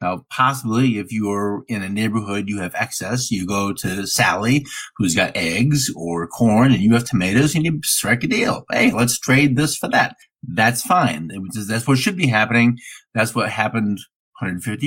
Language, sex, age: English, male, 50-69